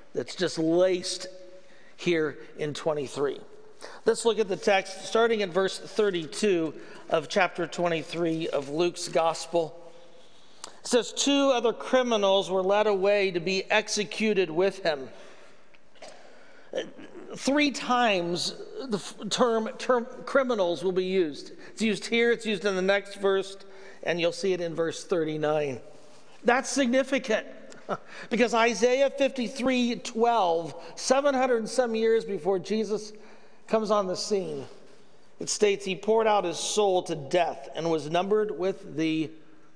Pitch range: 175-230 Hz